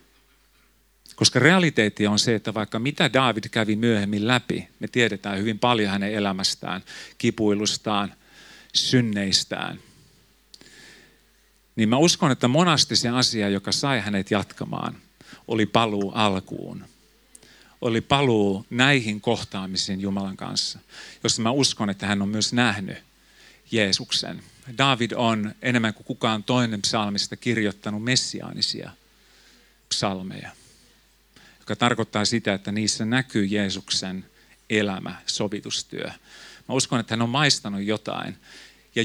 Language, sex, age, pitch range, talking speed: Finnish, male, 40-59, 100-120 Hz, 115 wpm